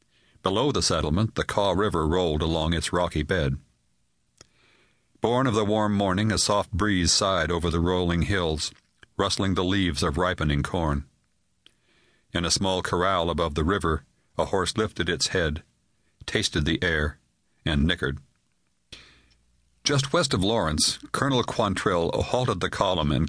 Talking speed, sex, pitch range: 145 wpm, male, 80-115 Hz